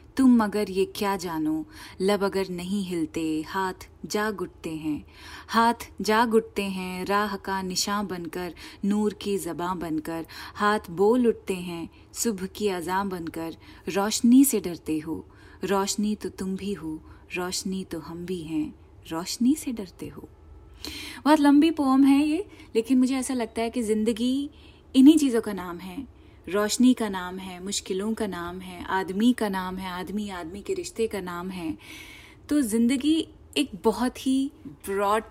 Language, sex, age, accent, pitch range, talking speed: Hindi, female, 20-39, native, 180-245 Hz, 160 wpm